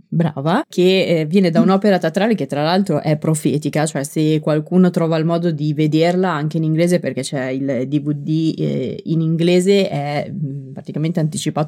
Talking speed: 160 wpm